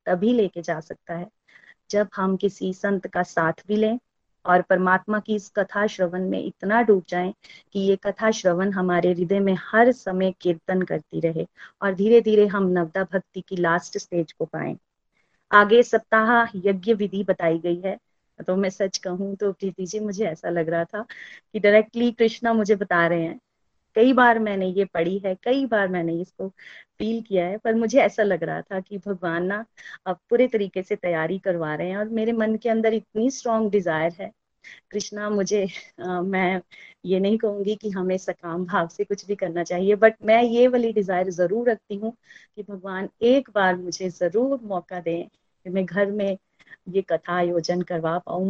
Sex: female